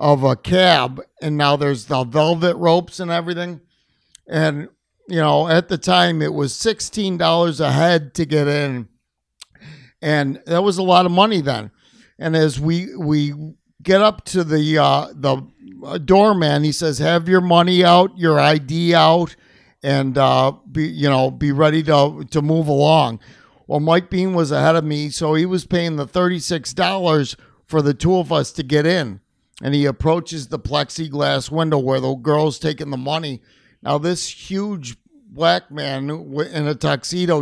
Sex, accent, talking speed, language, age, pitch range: male, American, 170 wpm, English, 50-69, 145-180 Hz